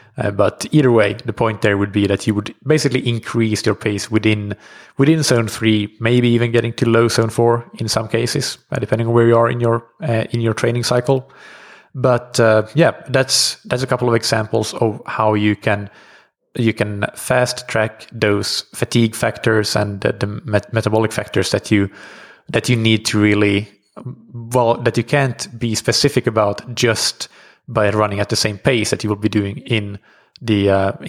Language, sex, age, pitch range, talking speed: English, male, 20-39, 105-125 Hz, 185 wpm